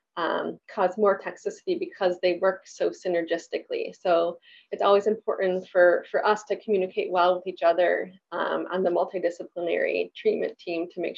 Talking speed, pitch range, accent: 160 wpm, 190-275 Hz, American